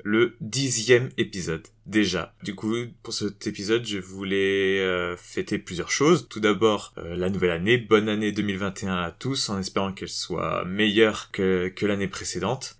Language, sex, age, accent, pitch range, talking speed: French, male, 20-39, French, 100-115 Hz, 160 wpm